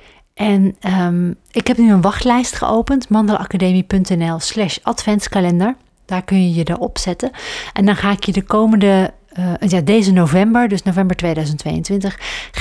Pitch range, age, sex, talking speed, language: 175-215 Hz, 40-59, female, 150 wpm, Dutch